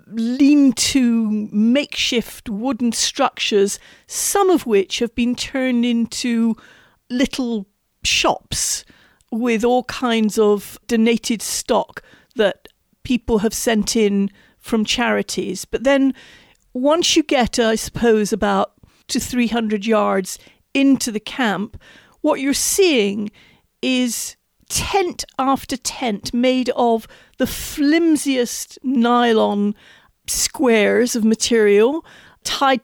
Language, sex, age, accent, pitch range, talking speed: English, female, 40-59, British, 215-260 Hz, 100 wpm